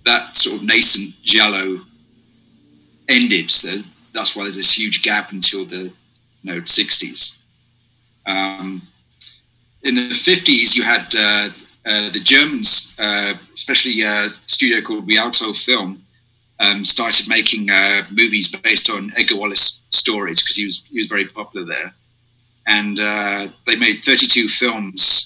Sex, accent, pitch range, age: male, British, 100-120 Hz, 30-49